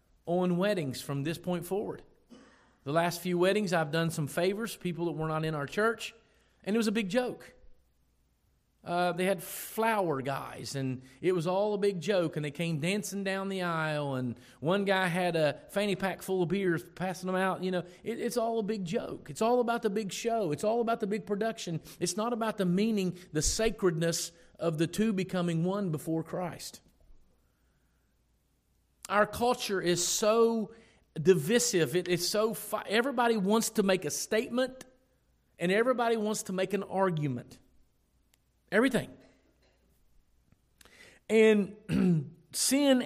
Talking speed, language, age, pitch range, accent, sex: 165 wpm, English, 40-59, 170-220 Hz, American, male